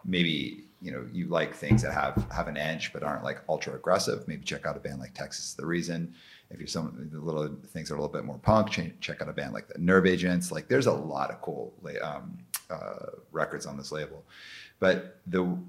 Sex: male